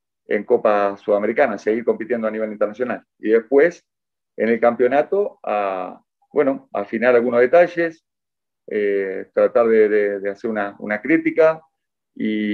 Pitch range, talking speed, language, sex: 110-150 Hz, 135 wpm, Spanish, male